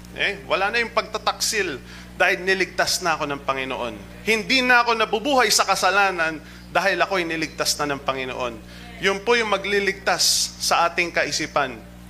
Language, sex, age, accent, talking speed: Filipino, male, 30-49, native, 150 wpm